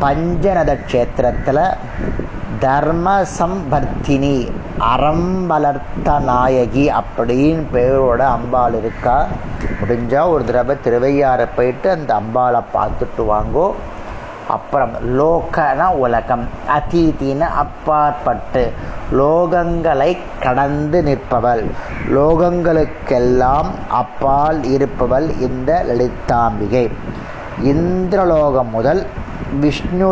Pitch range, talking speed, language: 125-160 Hz, 65 wpm, Tamil